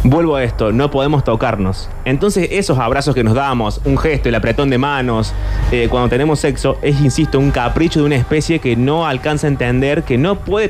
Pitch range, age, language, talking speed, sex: 115-165 Hz, 20-39, Spanish, 210 wpm, male